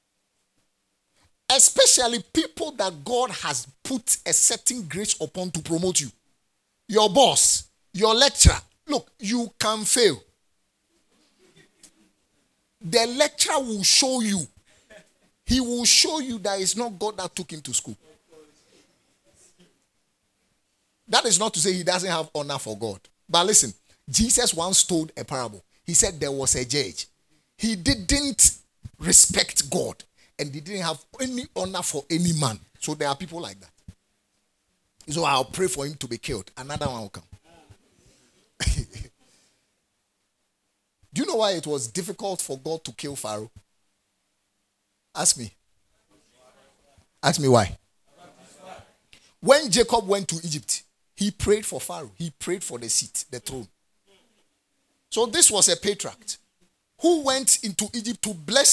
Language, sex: English, male